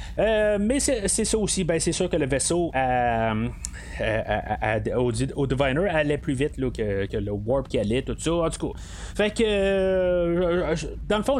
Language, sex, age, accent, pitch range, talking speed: French, male, 30-49, Canadian, 130-180 Hz, 220 wpm